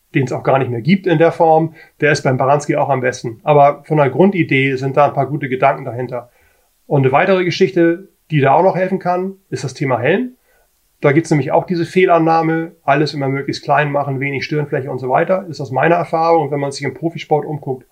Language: German